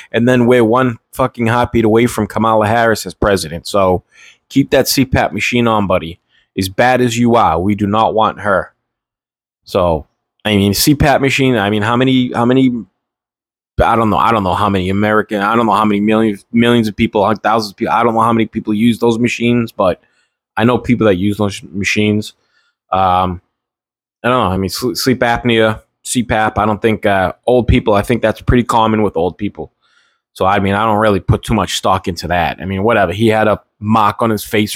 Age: 20-39